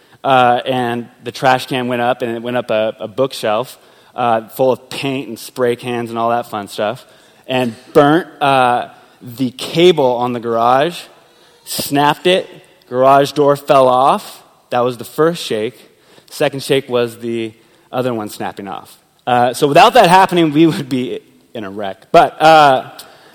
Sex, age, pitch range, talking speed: male, 20-39, 125-170 Hz, 170 wpm